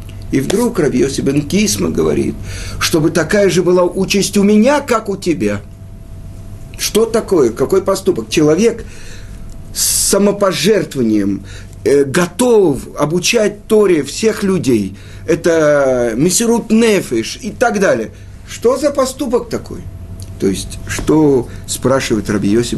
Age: 50-69